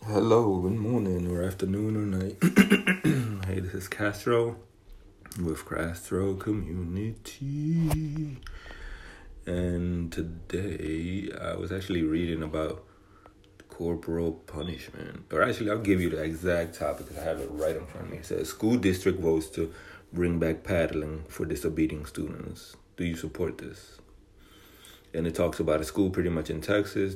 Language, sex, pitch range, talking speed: English, male, 80-100 Hz, 145 wpm